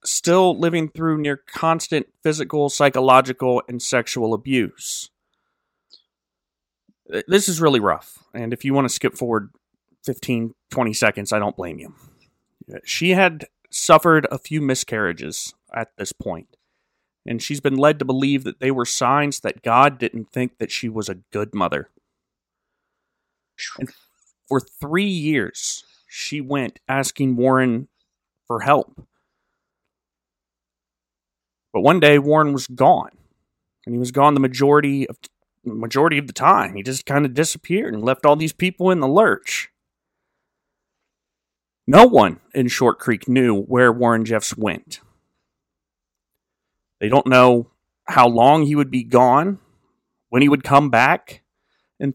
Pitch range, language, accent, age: 120-150 Hz, English, American, 30-49